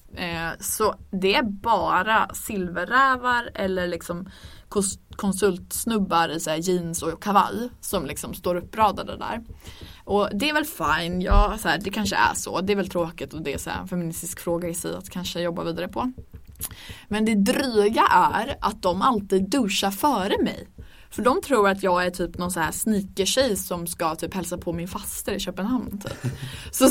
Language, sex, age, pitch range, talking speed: English, female, 20-39, 175-240 Hz, 165 wpm